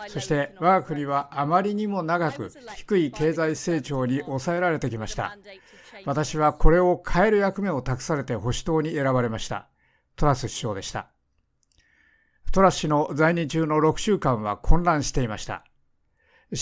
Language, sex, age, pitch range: Japanese, male, 60-79, 130-180 Hz